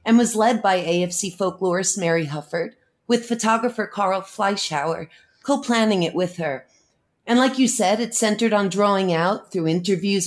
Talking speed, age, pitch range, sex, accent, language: 160 wpm, 30-49, 165-220 Hz, female, American, English